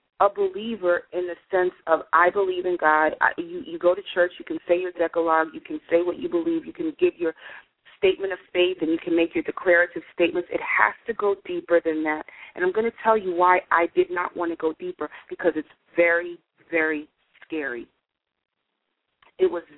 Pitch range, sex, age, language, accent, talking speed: 165-230 Hz, female, 30-49, English, American, 205 wpm